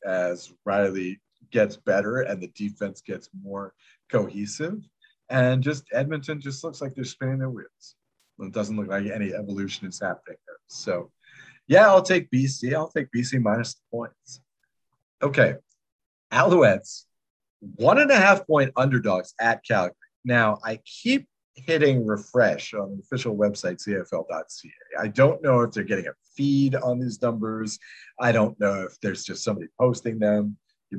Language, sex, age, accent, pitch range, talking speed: English, male, 40-59, American, 105-130 Hz, 155 wpm